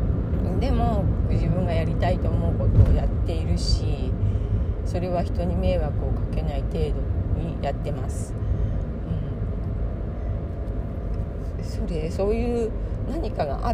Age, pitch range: 40-59, 90-105 Hz